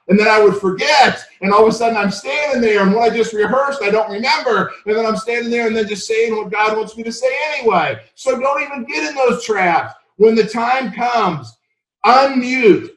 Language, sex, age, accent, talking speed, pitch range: English, male, 50-69, American, 225 wpm, 195-235 Hz